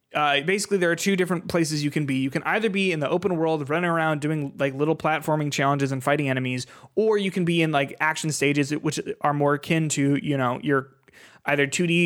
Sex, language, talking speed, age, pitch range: male, English, 230 wpm, 20-39, 140-185 Hz